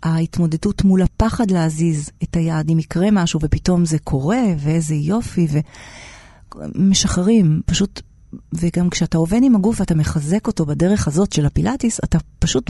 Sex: female